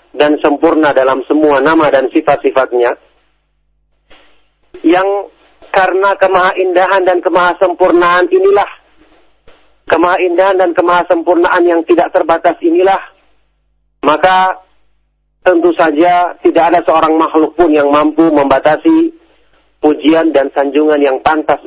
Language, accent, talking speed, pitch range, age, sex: Indonesian, native, 105 wpm, 150-185 Hz, 40-59, male